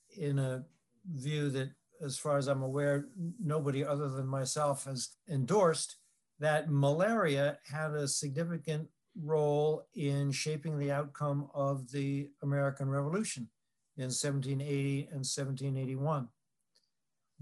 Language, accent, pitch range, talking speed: English, American, 140-170 Hz, 115 wpm